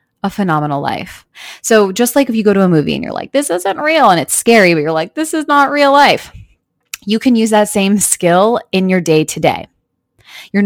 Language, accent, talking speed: English, American, 225 wpm